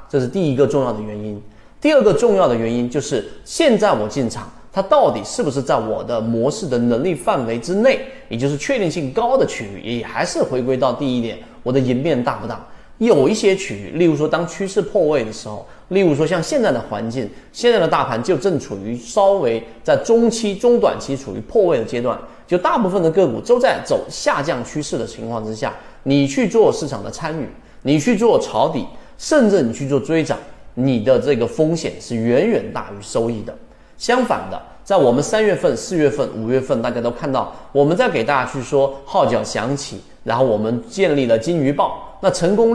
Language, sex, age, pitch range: Chinese, male, 30-49, 115-185 Hz